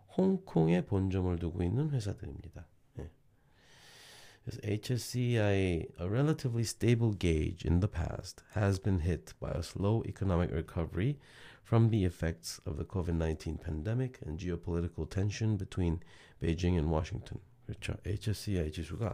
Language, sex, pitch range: Korean, male, 90-120 Hz